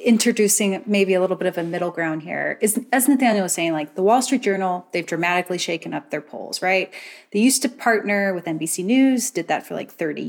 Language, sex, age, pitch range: English, female, 30-49, 180-225 Hz